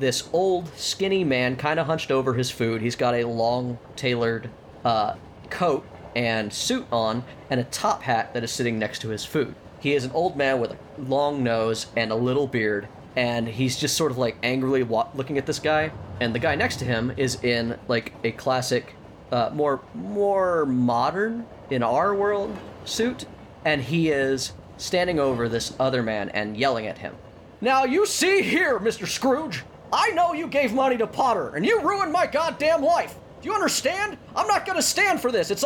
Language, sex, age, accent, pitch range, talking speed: English, male, 30-49, American, 120-200 Hz, 195 wpm